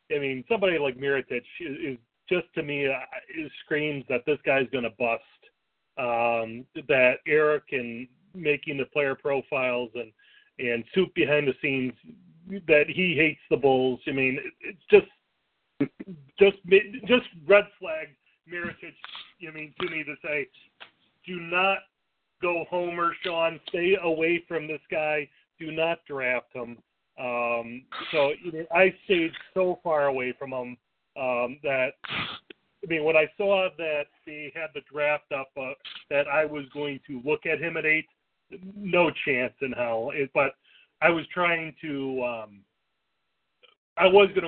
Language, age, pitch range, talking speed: English, 40-59, 130-175 Hz, 160 wpm